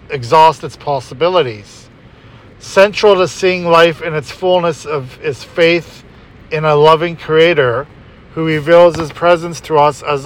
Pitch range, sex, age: 140-170 Hz, male, 50-69